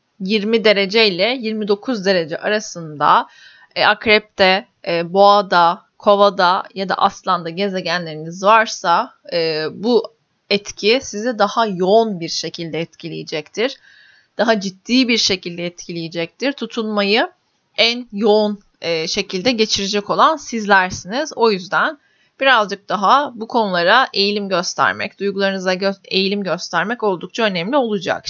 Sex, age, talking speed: female, 30-49, 110 wpm